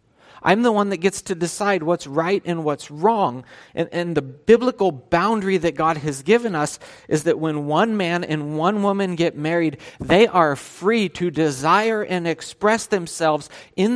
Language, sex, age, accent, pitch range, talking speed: English, male, 40-59, American, 145-185 Hz, 175 wpm